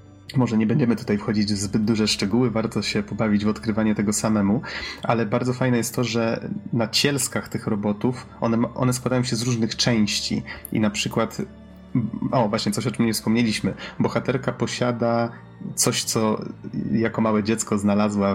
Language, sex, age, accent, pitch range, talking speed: Polish, male, 30-49, native, 105-120 Hz, 165 wpm